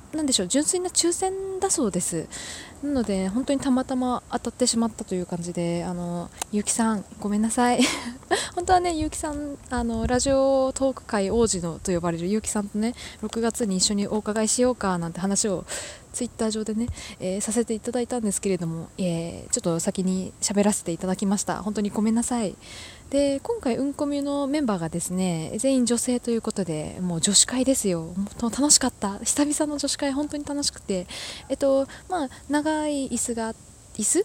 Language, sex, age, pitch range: Japanese, female, 20-39, 195-270 Hz